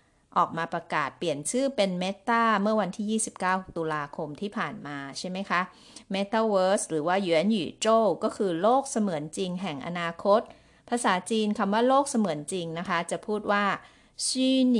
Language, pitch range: Chinese, 170-225 Hz